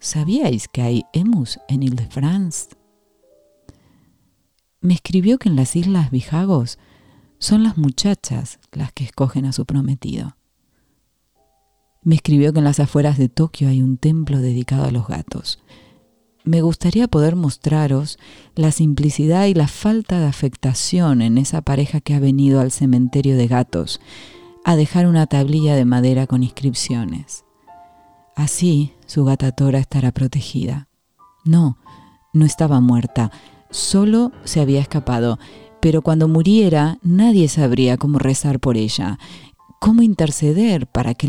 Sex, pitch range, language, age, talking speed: female, 130-165 Hz, Spanish, 40-59, 135 wpm